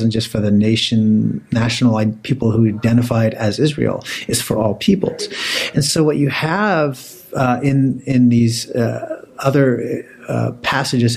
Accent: American